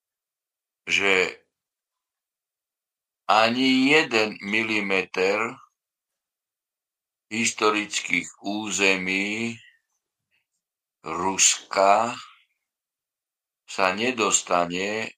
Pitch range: 85-105 Hz